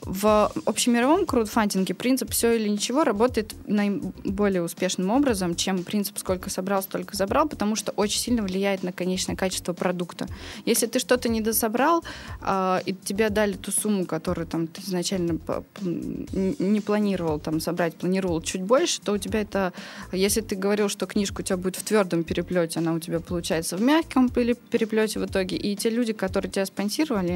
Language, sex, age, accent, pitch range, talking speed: Russian, female, 20-39, native, 185-225 Hz, 165 wpm